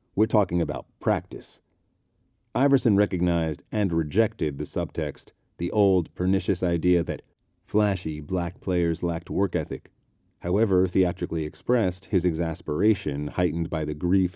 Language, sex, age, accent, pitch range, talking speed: English, male, 40-59, American, 80-95 Hz, 125 wpm